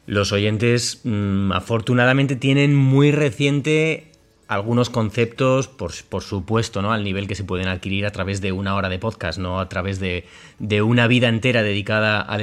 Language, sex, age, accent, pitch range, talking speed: Spanish, male, 30-49, Spanish, 100-125 Hz, 170 wpm